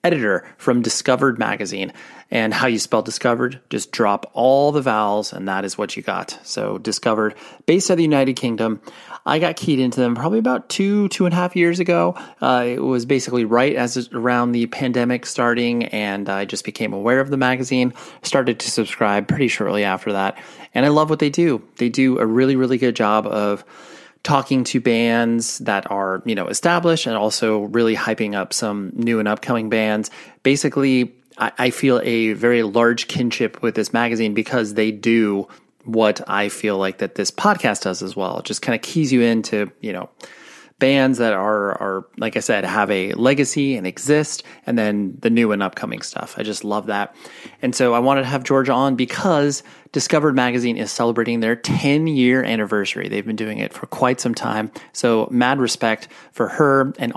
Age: 30-49